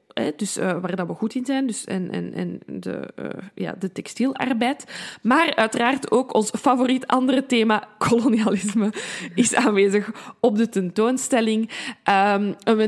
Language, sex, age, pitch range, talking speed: Dutch, female, 20-39, 195-230 Hz, 150 wpm